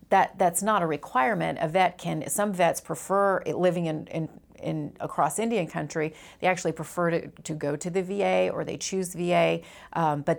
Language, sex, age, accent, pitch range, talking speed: English, female, 40-59, American, 150-170 Hz, 190 wpm